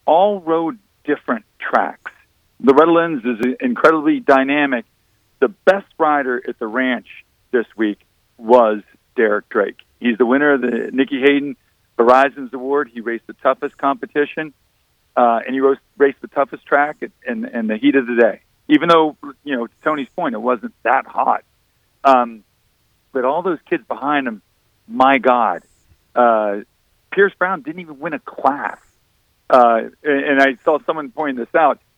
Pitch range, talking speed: 120-150 Hz, 160 wpm